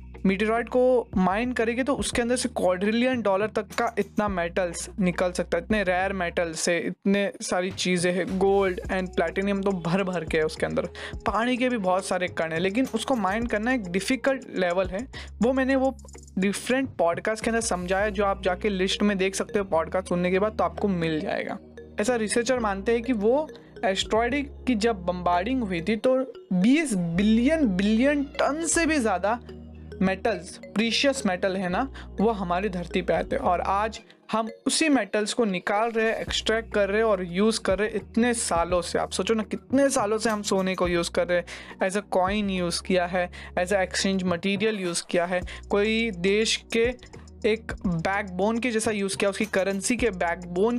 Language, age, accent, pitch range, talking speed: Hindi, 20-39, native, 185-230 Hz, 195 wpm